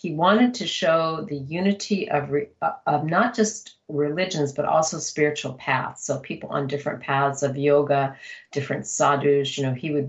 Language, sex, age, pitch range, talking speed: English, female, 50-69, 140-185 Hz, 165 wpm